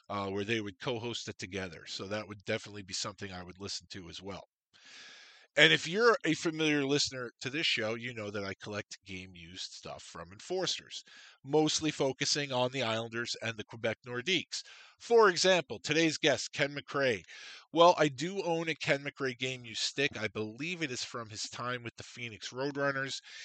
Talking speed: 190 wpm